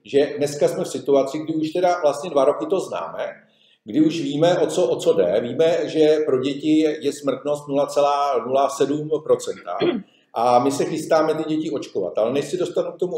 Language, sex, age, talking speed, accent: Czech, male, 50-69, 180 wpm, native